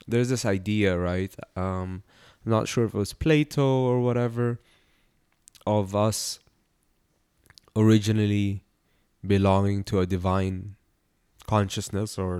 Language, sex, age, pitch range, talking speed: English, male, 20-39, 90-105 Hz, 110 wpm